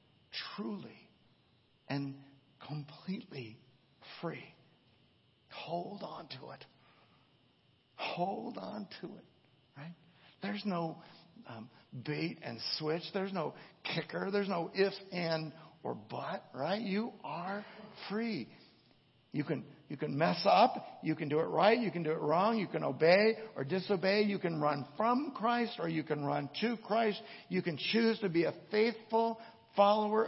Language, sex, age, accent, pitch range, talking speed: English, male, 60-79, American, 150-205 Hz, 145 wpm